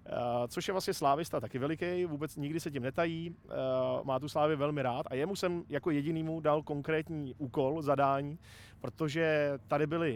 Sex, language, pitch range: male, Czech, 135-155 Hz